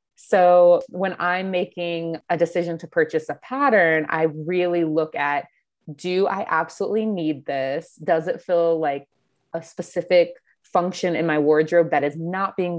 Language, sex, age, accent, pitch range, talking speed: English, female, 20-39, American, 160-195 Hz, 155 wpm